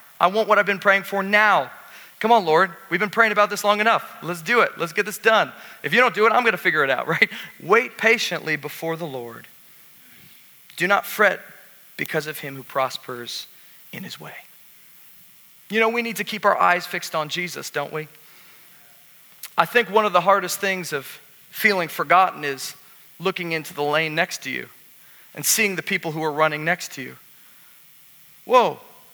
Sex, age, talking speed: male, 40-59, 195 wpm